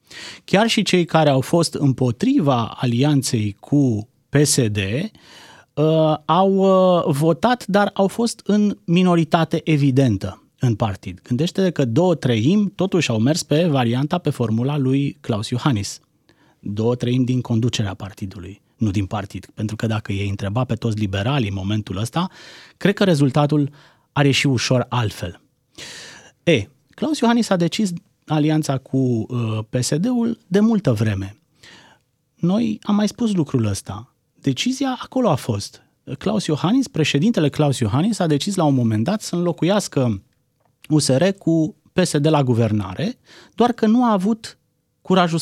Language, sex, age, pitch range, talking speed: Romanian, male, 30-49, 120-180 Hz, 140 wpm